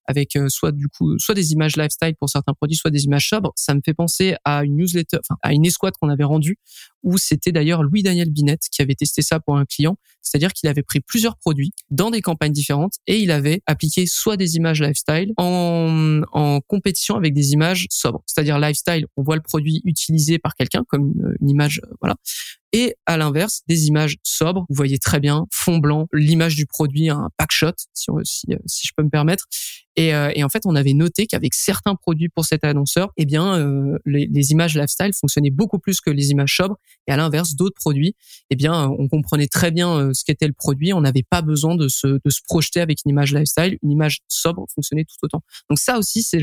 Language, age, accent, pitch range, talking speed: French, 20-39, French, 145-175 Hz, 225 wpm